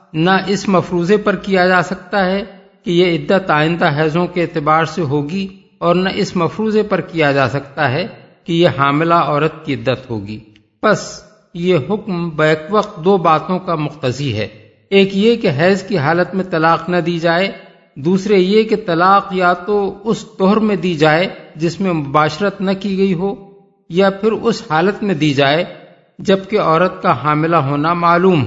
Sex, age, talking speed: male, 50-69, 180 wpm